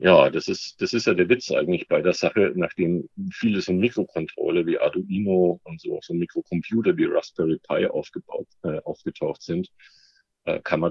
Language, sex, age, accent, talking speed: German, male, 50-69, German, 185 wpm